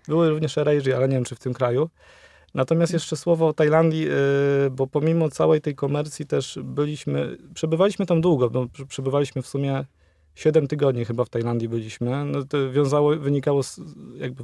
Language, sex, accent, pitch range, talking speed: Polish, male, native, 125-145 Hz, 175 wpm